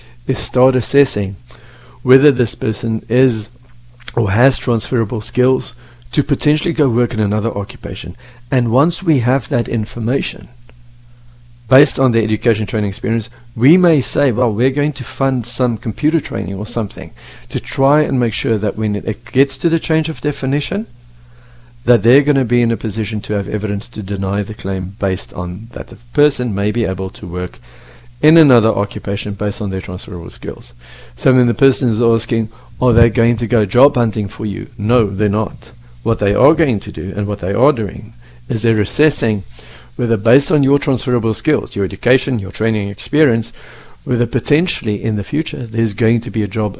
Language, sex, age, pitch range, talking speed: English, male, 50-69, 105-130 Hz, 185 wpm